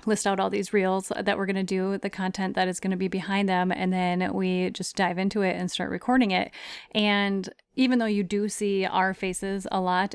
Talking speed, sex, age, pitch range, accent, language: 235 wpm, female, 30-49, 180-205 Hz, American, English